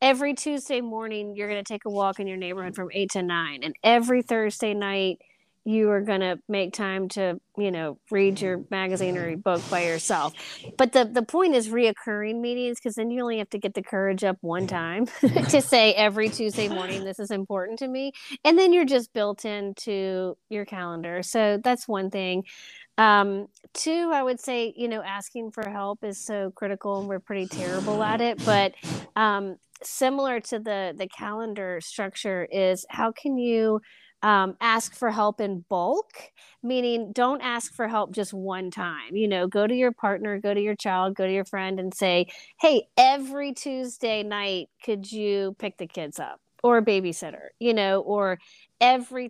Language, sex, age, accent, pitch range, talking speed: English, female, 30-49, American, 190-230 Hz, 190 wpm